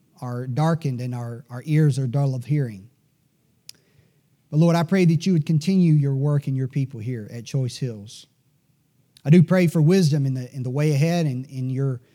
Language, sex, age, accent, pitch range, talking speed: English, male, 40-59, American, 130-155 Hz, 200 wpm